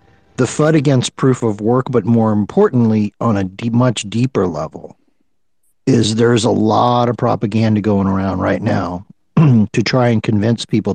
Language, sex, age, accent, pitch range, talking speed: English, male, 50-69, American, 105-125 Hz, 160 wpm